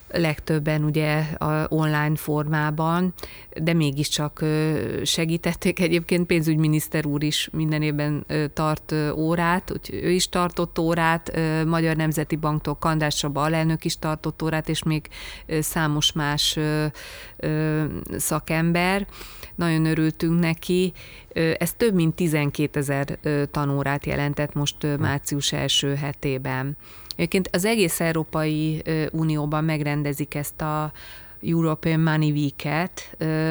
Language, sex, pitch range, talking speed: Hungarian, female, 150-170 Hz, 105 wpm